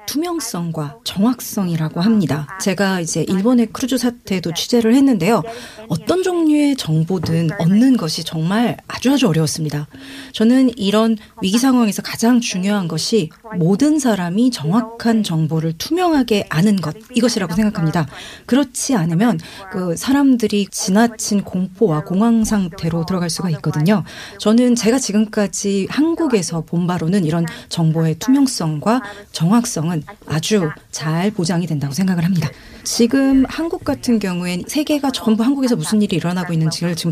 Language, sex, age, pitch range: Korean, female, 30-49, 170-235 Hz